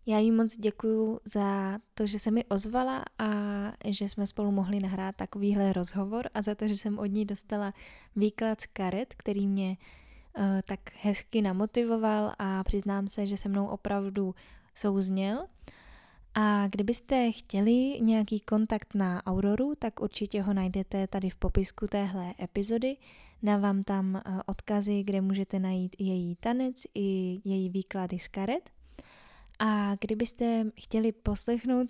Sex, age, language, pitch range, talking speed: female, 10-29, Czech, 195-215 Hz, 145 wpm